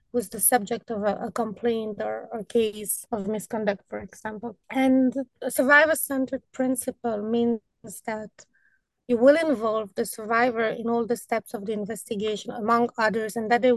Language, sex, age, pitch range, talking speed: English, female, 20-39, 225-265 Hz, 155 wpm